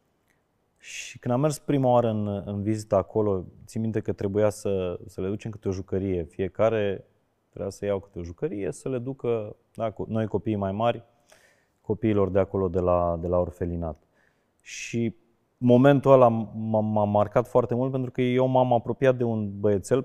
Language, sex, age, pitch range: Romanian, male, 30-49, 95-120 Hz